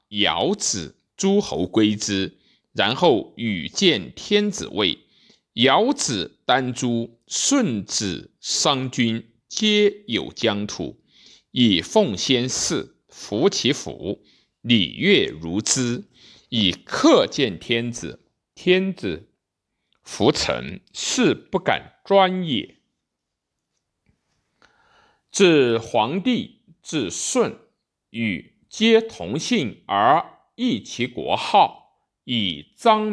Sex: male